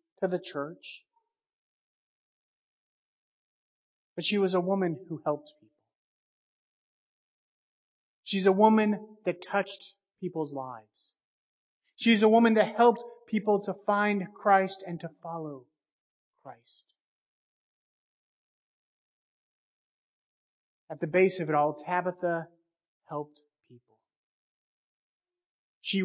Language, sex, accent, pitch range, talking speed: English, male, American, 155-210 Hz, 95 wpm